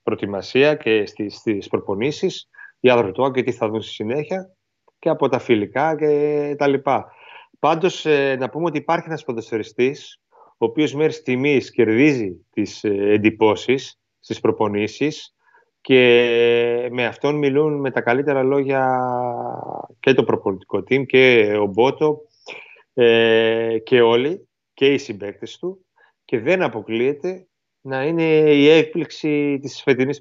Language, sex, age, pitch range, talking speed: Greek, male, 30-49, 110-150 Hz, 135 wpm